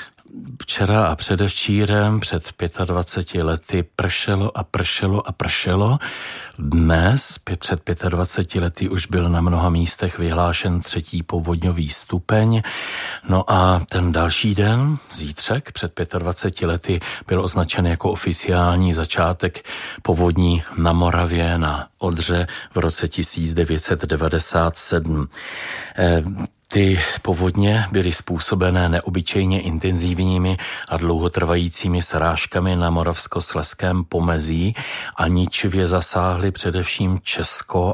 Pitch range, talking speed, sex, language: 85-95 Hz, 105 wpm, male, Czech